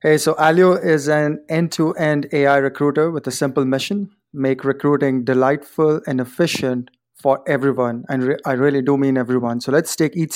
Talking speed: 170 wpm